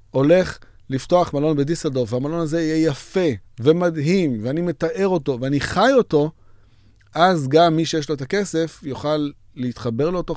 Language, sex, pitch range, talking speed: Hebrew, male, 110-150 Hz, 145 wpm